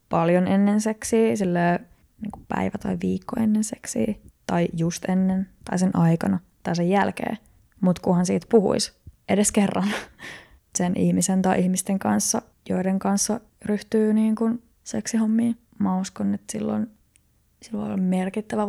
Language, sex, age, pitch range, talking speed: Finnish, female, 20-39, 180-215 Hz, 130 wpm